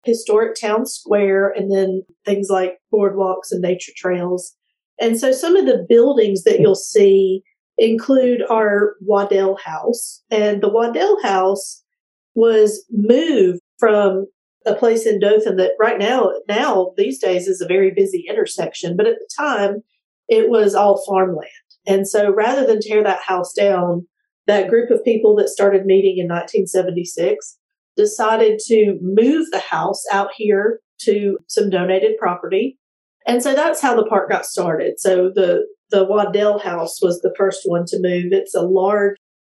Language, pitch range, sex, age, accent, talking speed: English, 190-250 Hz, female, 40-59, American, 160 wpm